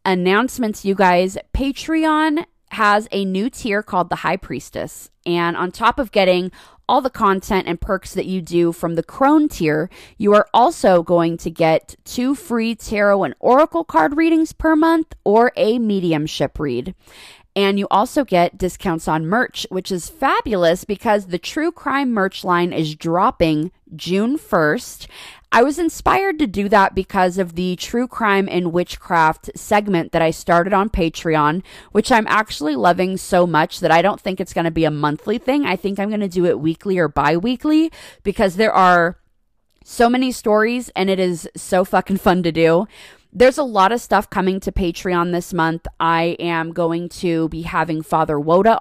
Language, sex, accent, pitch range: English, female, American, 165-215 Hz